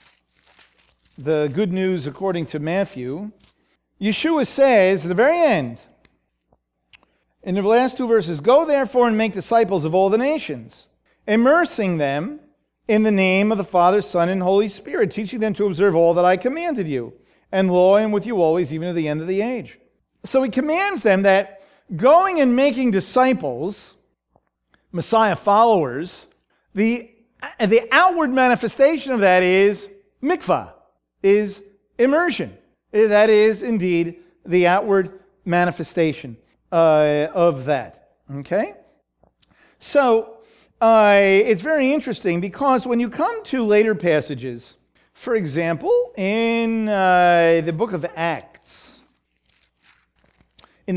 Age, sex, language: 40-59, male, English